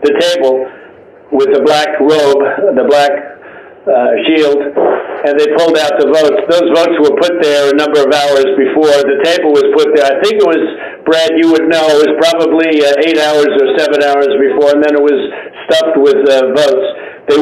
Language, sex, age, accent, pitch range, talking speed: English, male, 60-79, American, 145-175 Hz, 200 wpm